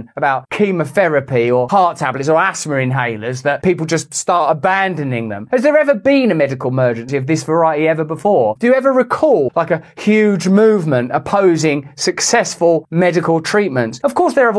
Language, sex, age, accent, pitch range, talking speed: English, male, 30-49, British, 140-220 Hz, 175 wpm